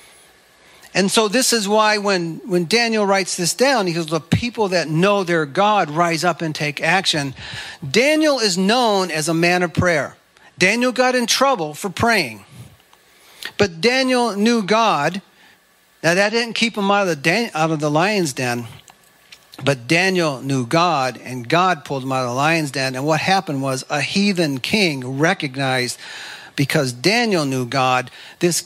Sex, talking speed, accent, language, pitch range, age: male, 170 wpm, American, English, 140-195 Hz, 50-69